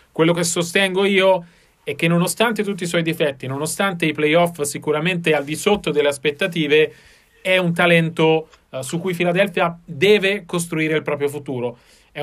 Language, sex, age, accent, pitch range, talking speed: Italian, male, 30-49, native, 150-180 Hz, 155 wpm